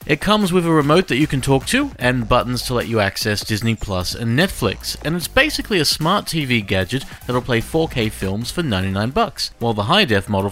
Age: 40-59